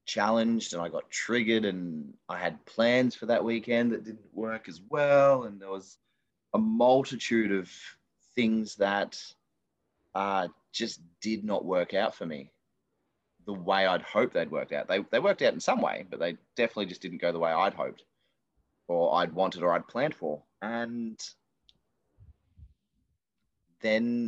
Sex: male